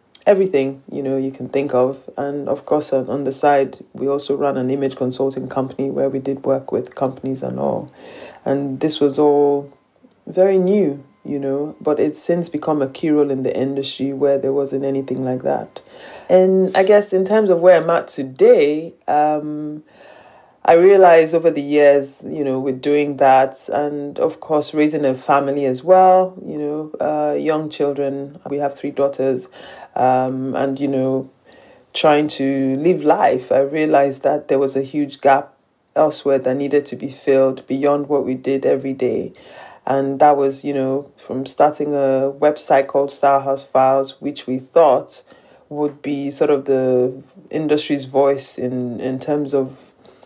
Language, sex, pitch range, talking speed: English, female, 135-150 Hz, 170 wpm